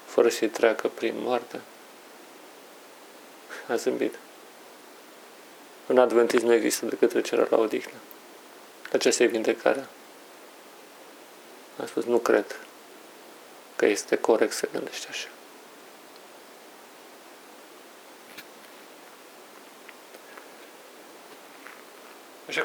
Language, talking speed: Romanian, 75 wpm